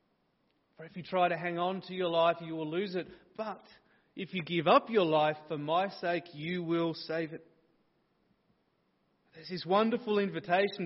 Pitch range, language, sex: 160-190 Hz, English, male